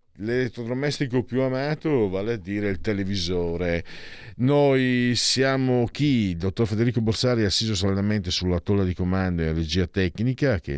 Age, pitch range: 50-69, 90-120 Hz